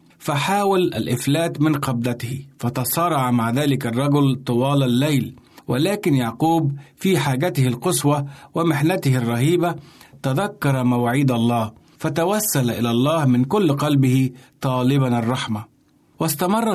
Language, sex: Arabic, male